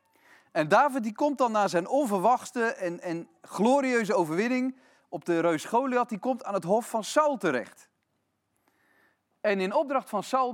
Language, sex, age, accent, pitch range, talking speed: Dutch, male, 40-59, Dutch, 165-265 Hz, 165 wpm